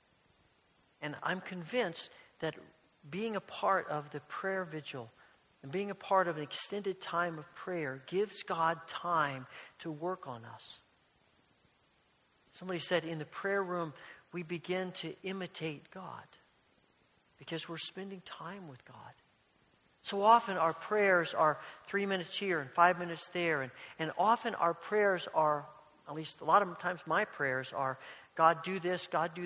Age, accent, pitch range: 50-69, American, 155-185 Hz